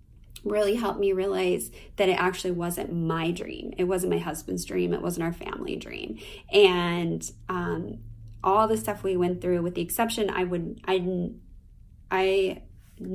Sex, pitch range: female, 170-190 Hz